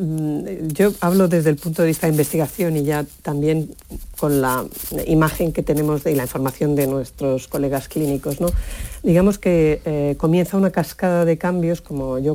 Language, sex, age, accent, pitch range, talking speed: Spanish, female, 40-59, Spanish, 155-180 Hz, 165 wpm